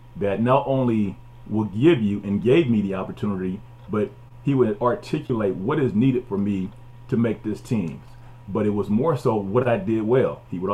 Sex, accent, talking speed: male, American, 195 wpm